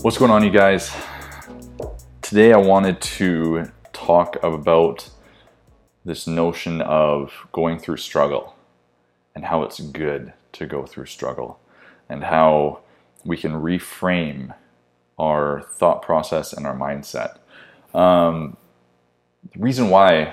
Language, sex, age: English, male, 20-39